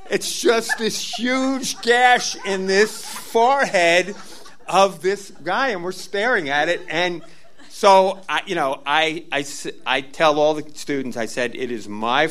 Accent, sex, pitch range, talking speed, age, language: American, male, 135-180 Hz, 160 wpm, 50-69, English